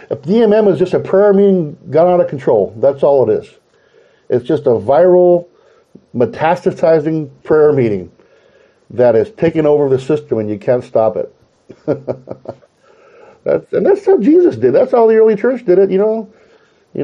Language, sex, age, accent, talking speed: English, male, 50-69, American, 175 wpm